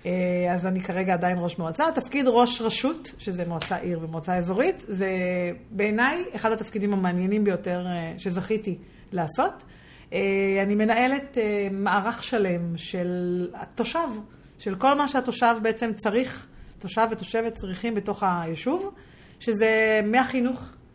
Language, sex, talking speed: Hebrew, female, 115 wpm